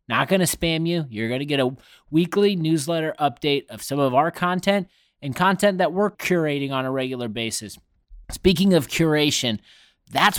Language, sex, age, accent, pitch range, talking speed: English, male, 30-49, American, 130-175 Hz, 180 wpm